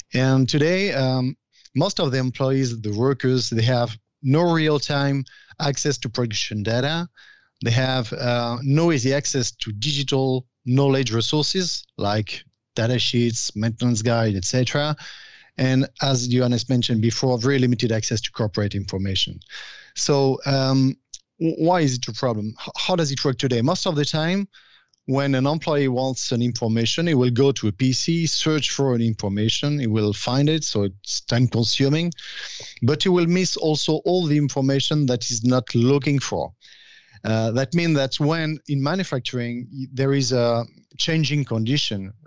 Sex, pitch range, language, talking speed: male, 120-145 Hz, English, 155 wpm